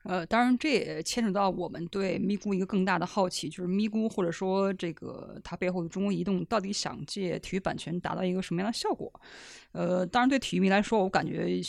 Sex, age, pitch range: female, 20-39, 180-220 Hz